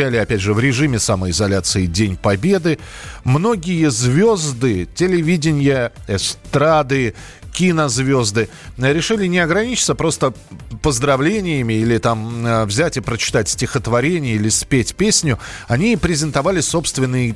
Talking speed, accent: 100 wpm, native